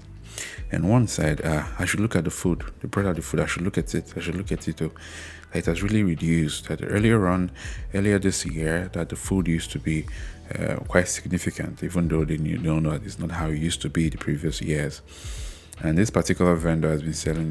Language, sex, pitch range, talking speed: English, male, 75-90 Hz, 235 wpm